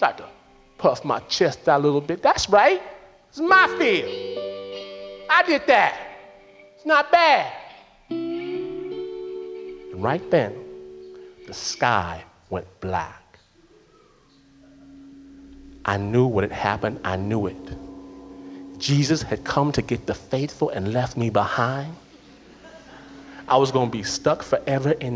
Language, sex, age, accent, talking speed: English, male, 30-49, American, 125 wpm